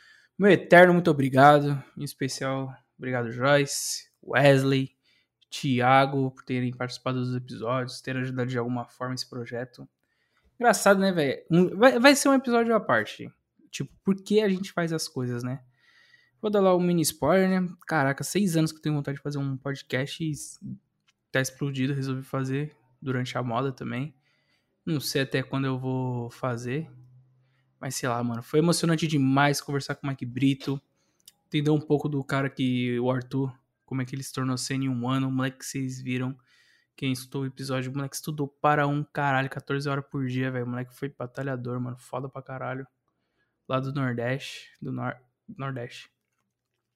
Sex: male